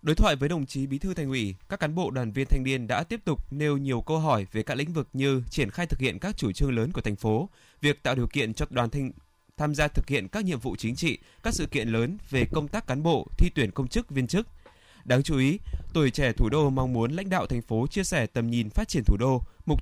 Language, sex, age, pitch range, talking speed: Vietnamese, male, 20-39, 115-150 Hz, 280 wpm